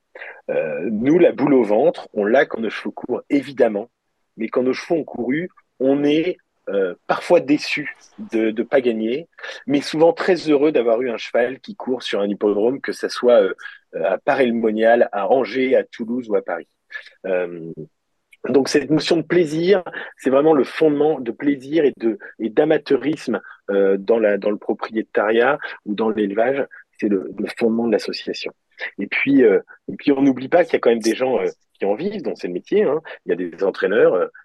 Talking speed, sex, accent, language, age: 200 wpm, male, French, French, 40-59